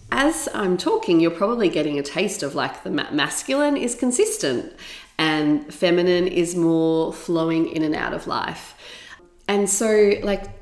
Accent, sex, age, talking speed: Australian, female, 30-49, 155 wpm